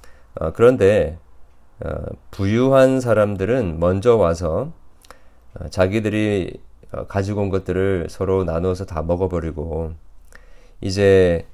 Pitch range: 75-100 Hz